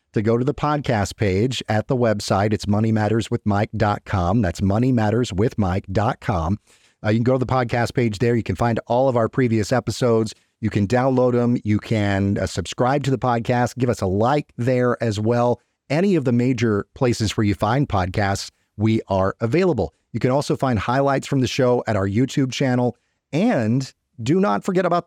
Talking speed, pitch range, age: 180 wpm, 105-130 Hz, 40-59